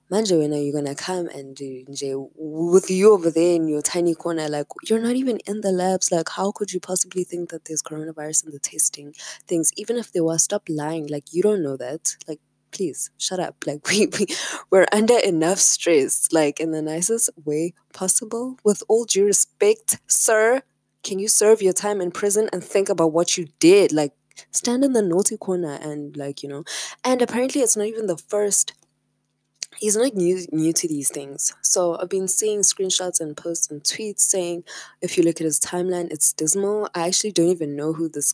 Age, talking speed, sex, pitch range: 20-39, 210 wpm, female, 150-205 Hz